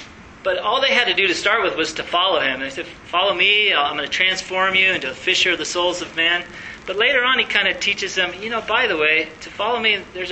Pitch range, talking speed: 155-190 Hz, 275 wpm